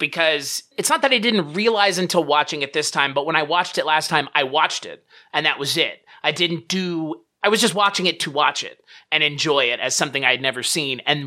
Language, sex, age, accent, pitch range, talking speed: English, male, 30-49, American, 145-180 Hz, 245 wpm